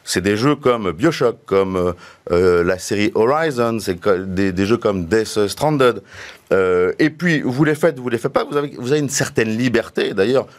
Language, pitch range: French, 105-145 Hz